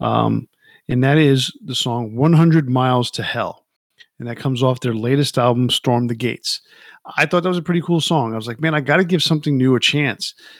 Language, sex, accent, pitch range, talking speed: English, male, American, 125-155 Hz, 225 wpm